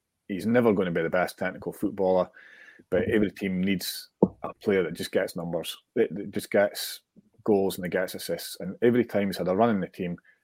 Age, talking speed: 30-49, 215 wpm